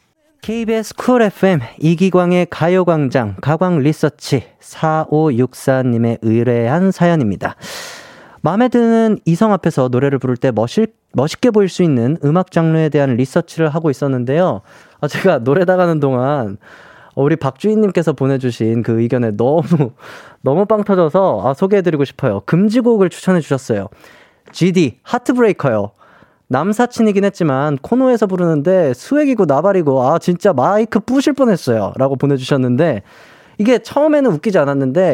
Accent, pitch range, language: native, 140-215 Hz, Korean